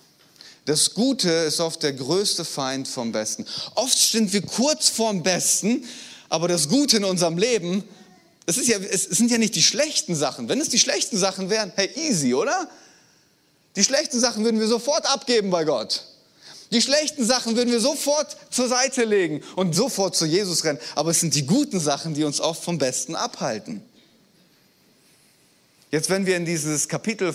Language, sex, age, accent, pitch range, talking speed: German, male, 30-49, German, 160-220 Hz, 175 wpm